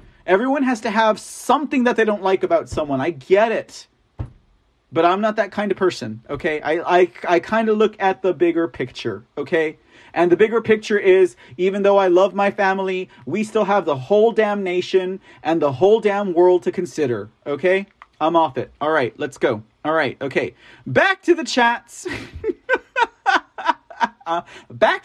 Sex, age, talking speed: male, 40-59, 175 wpm